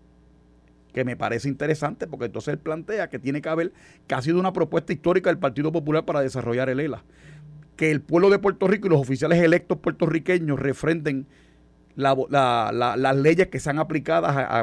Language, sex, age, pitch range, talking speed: Spanish, male, 40-59, 120-160 Hz, 195 wpm